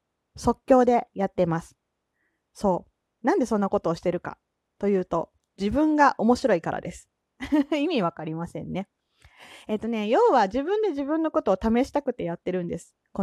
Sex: female